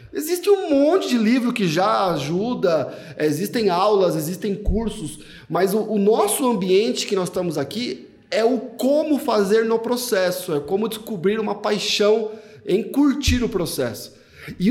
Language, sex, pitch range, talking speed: Portuguese, male, 155-220 Hz, 150 wpm